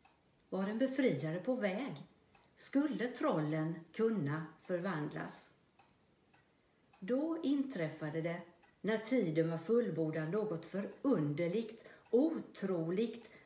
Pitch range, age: 170-230 Hz, 50-69